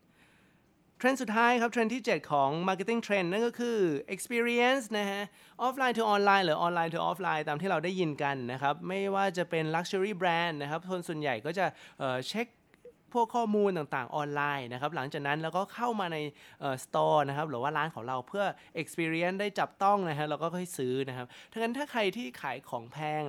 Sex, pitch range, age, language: male, 140-190 Hz, 20-39, Thai